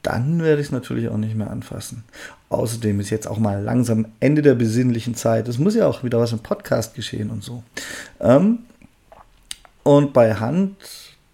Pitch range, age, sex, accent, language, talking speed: 110-135 Hz, 40-59, male, German, German, 175 wpm